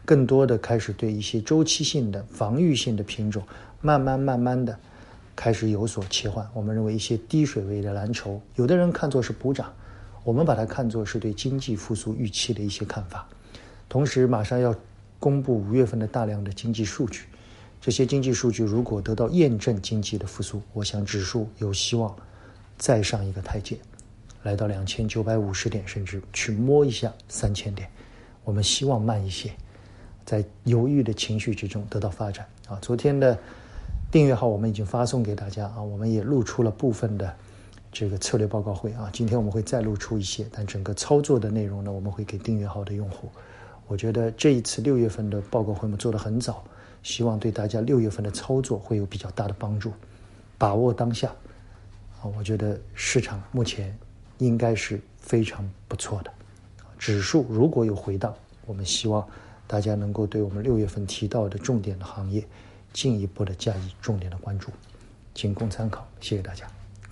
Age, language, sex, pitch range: 50-69, Chinese, male, 100-115 Hz